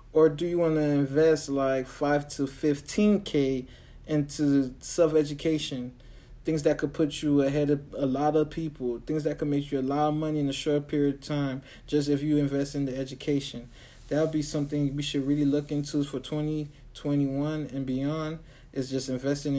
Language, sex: English, male